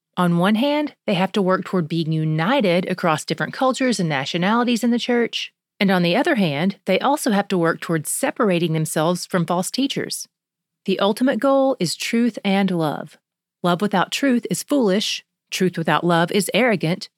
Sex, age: female, 30-49